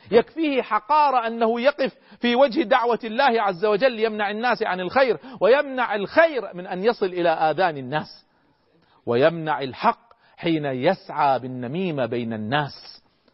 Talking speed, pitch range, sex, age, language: 130 wpm, 170-240 Hz, male, 40-59, Arabic